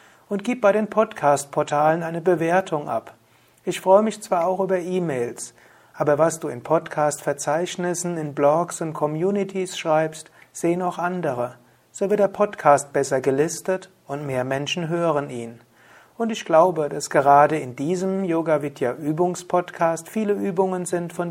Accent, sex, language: German, male, German